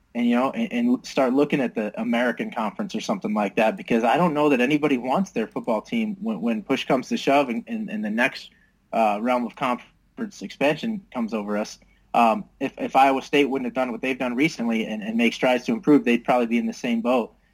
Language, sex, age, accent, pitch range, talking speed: English, male, 20-39, American, 130-220 Hz, 235 wpm